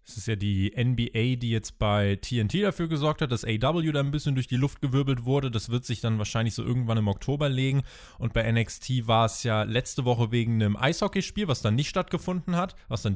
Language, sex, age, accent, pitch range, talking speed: German, male, 20-39, German, 110-145 Hz, 230 wpm